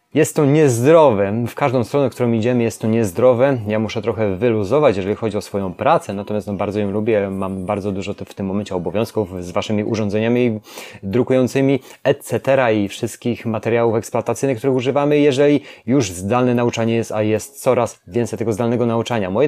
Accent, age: native, 30-49